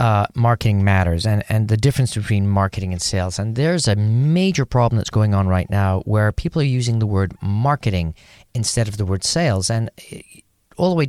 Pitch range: 100-135 Hz